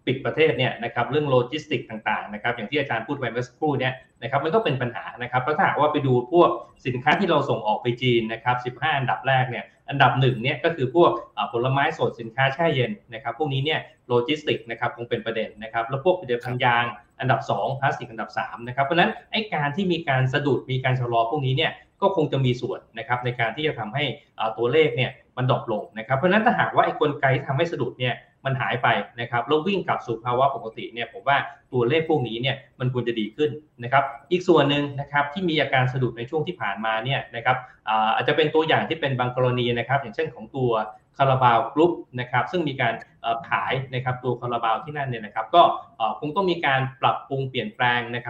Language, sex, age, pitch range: Thai, male, 20-39, 120-155 Hz